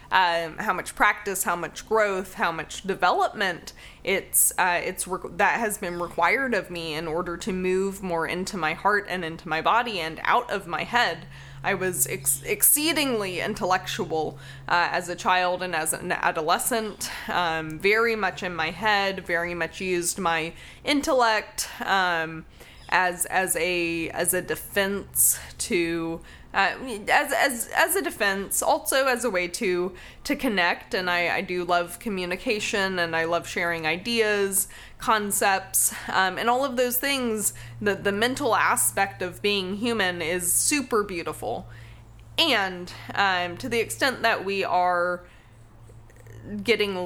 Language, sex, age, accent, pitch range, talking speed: English, female, 20-39, American, 170-210 Hz, 150 wpm